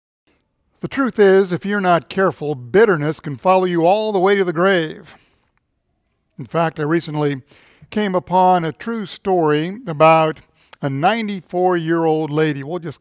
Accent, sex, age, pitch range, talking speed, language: American, male, 50-69, 155-195 Hz, 150 wpm, English